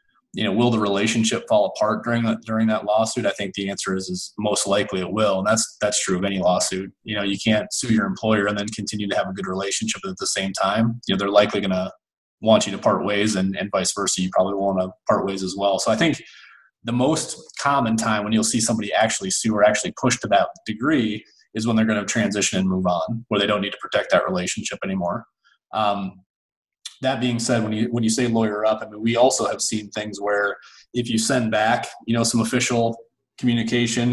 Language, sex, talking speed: English, male, 240 wpm